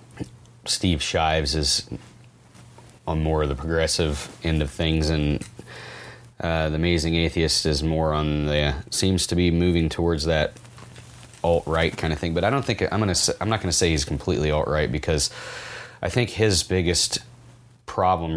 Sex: male